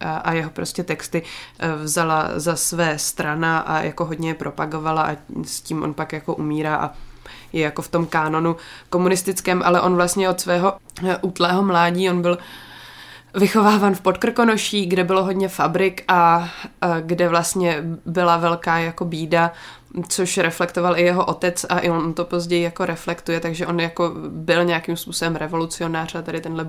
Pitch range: 160-175 Hz